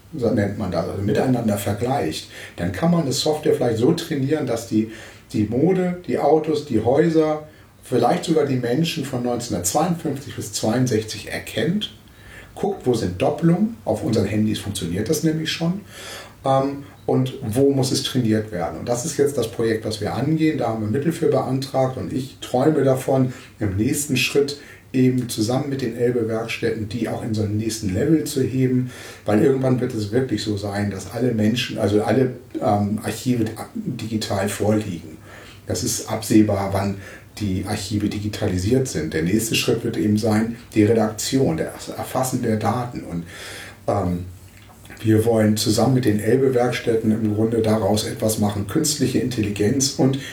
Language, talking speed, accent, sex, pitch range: German, 165 wpm, German, male, 105-130 Hz